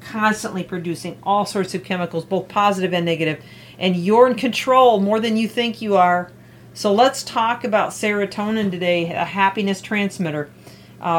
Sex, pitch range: female, 175-210 Hz